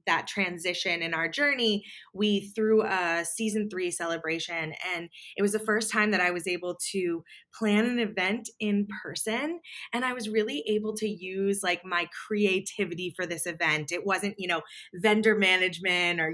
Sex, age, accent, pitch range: female, 20-39, American, 170-210 Hz